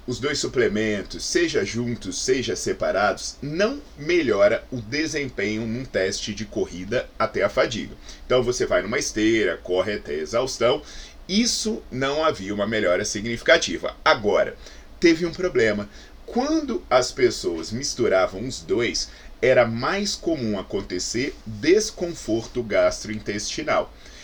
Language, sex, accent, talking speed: Portuguese, male, Brazilian, 120 wpm